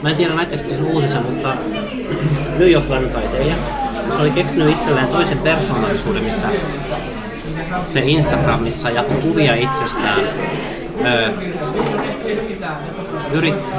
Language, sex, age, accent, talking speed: Finnish, male, 30-49, native, 90 wpm